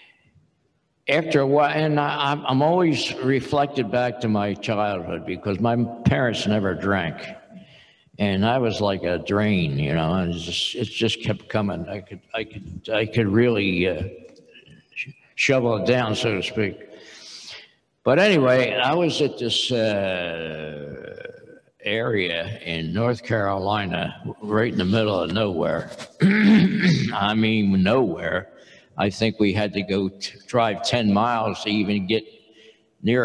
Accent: American